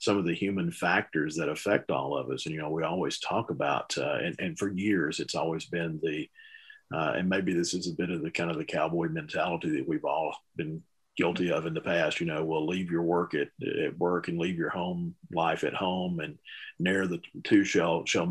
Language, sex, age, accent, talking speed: English, male, 50-69, American, 235 wpm